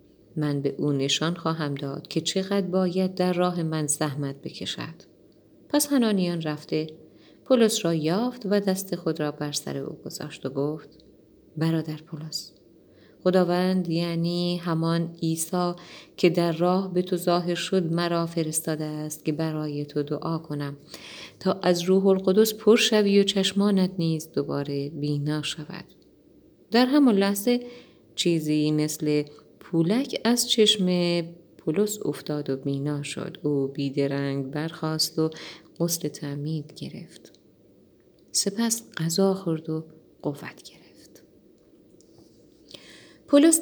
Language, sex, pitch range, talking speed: Persian, female, 150-190 Hz, 125 wpm